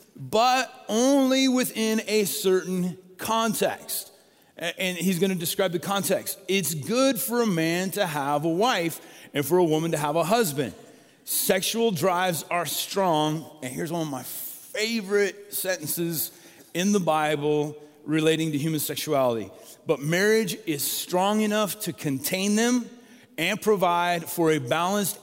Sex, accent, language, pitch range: male, American, English, 160-210 Hz